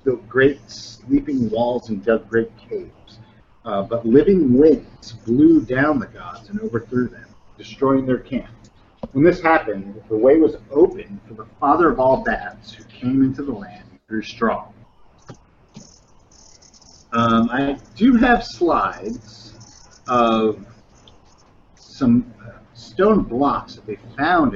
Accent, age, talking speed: American, 40-59, 135 wpm